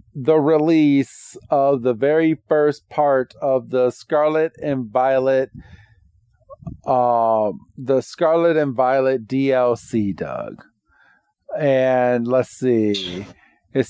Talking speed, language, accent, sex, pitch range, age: 100 wpm, English, American, male, 125-145 Hz, 40-59